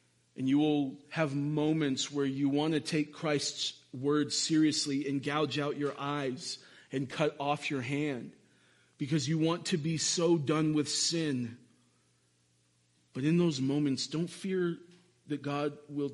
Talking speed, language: 150 wpm, English